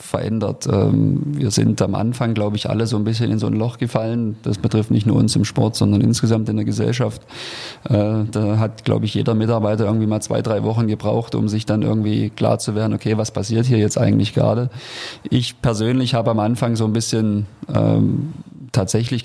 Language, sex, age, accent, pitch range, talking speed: German, male, 30-49, German, 105-125 Hz, 195 wpm